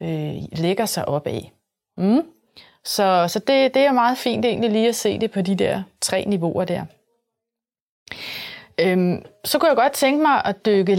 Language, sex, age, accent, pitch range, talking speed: English, female, 30-49, Danish, 180-235 Hz, 160 wpm